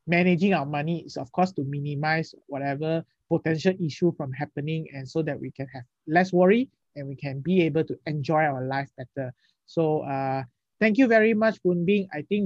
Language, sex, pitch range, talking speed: English, male, 145-180 Hz, 195 wpm